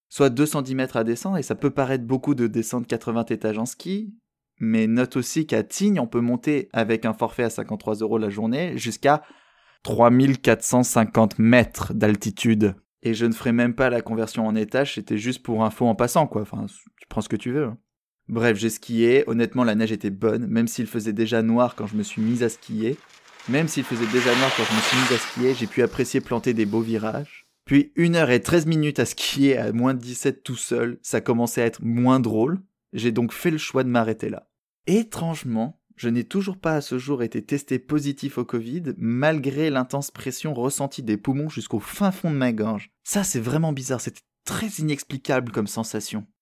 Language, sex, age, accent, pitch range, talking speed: French, male, 20-39, French, 110-140 Hz, 210 wpm